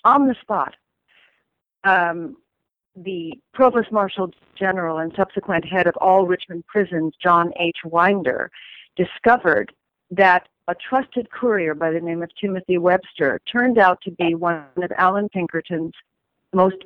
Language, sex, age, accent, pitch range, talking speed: English, female, 50-69, American, 170-215 Hz, 135 wpm